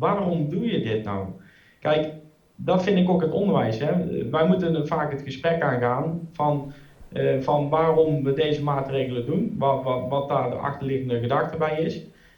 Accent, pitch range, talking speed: Dutch, 125-160 Hz, 160 wpm